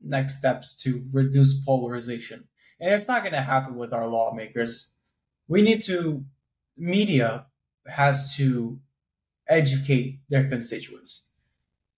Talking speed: 115 wpm